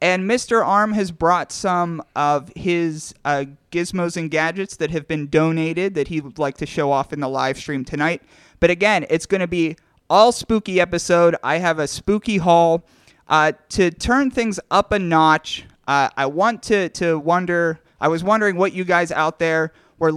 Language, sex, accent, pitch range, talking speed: English, male, American, 160-195 Hz, 190 wpm